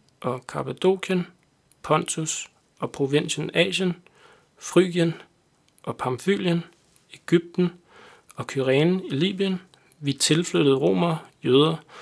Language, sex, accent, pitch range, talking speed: Danish, male, native, 140-175 Hz, 90 wpm